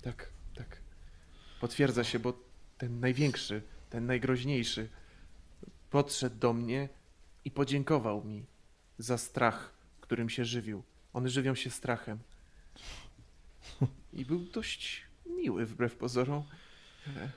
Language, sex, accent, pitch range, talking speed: Polish, male, native, 85-130 Hz, 105 wpm